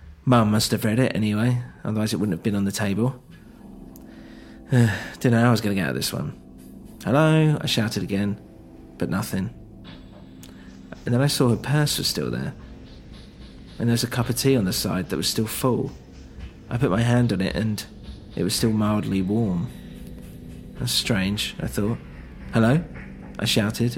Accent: British